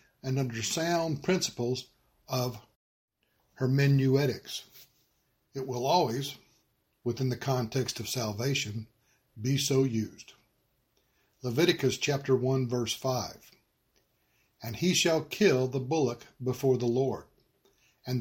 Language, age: English, 60-79